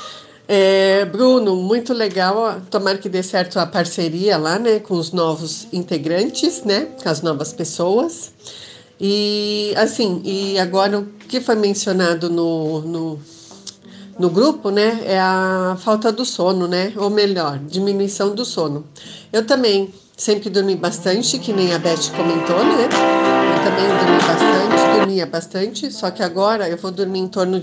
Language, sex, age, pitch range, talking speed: Portuguese, female, 40-59, 180-215 Hz, 150 wpm